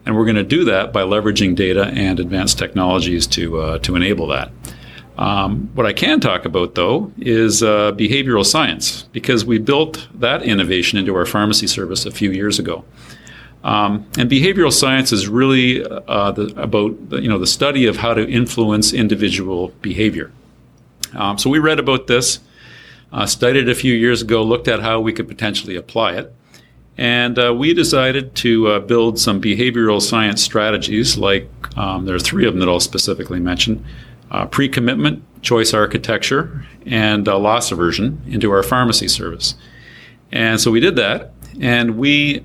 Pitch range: 105-125 Hz